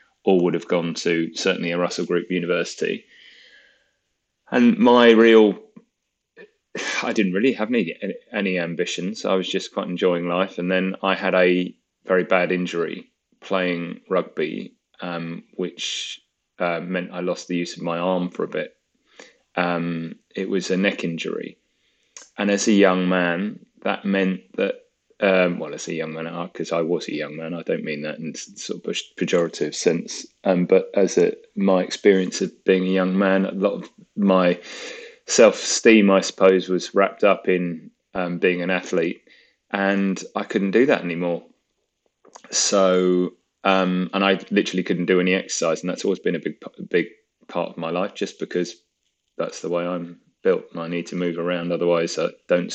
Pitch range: 85-100 Hz